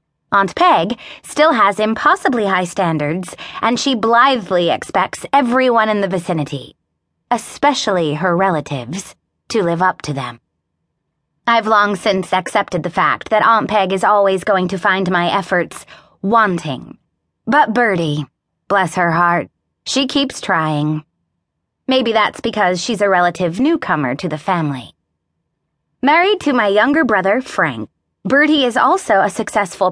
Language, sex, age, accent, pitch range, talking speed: English, female, 20-39, American, 170-245 Hz, 140 wpm